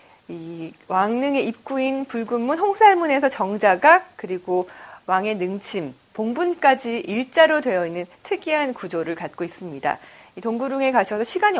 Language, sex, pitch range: Korean, female, 185-275 Hz